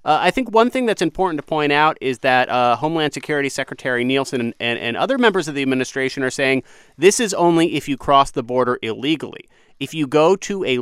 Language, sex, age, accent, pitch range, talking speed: English, male, 30-49, American, 125-160 Hz, 230 wpm